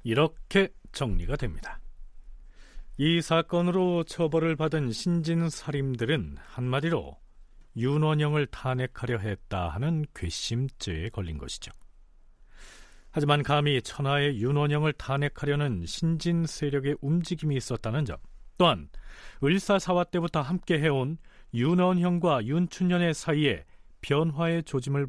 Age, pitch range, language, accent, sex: 40-59, 110-170 Hz, Korean, native, male